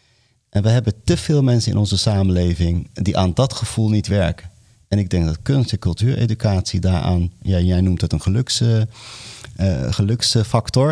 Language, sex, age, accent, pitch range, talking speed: Dutch, male, 40-59, Dutch, 95-120 Hz, 160 wpm